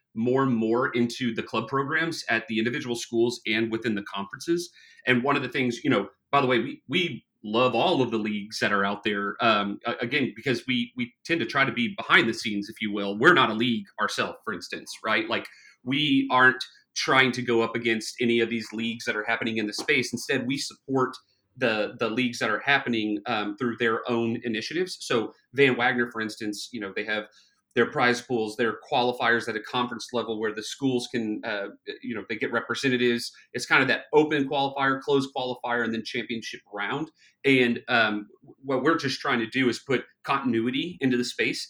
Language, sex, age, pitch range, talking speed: English, male, 30-49, 115-135 Hz, 210 wpm